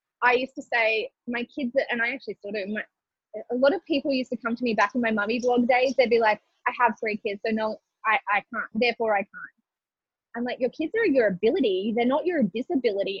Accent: Australian